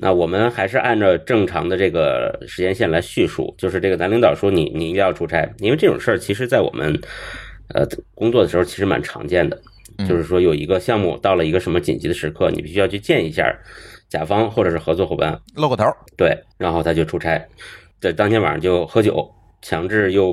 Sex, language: male, Chinese